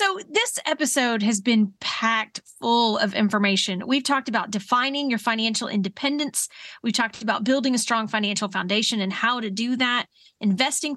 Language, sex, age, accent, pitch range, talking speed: English, female, 30-49, American, 210-275 Hz, 165 wpm